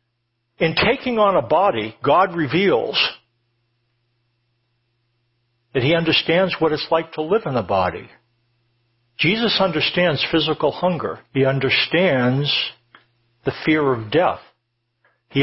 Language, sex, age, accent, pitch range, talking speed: English, male, 60-79, American, 120-165 Hz, 115 wpm